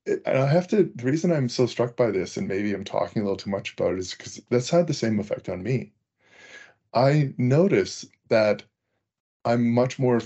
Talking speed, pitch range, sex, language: 210 wpm, 110-135 Hz, male, English